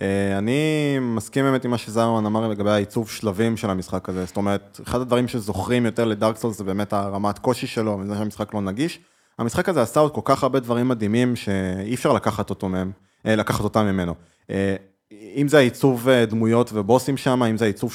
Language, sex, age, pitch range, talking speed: Hebrew, male, 20-39, 105-130 Hz, 185 wpm